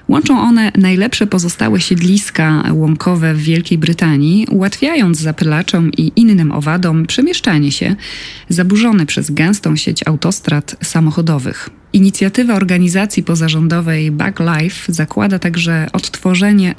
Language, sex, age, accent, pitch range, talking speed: Polish, female, 20-39, native, 160-200 Hz, 105 wpm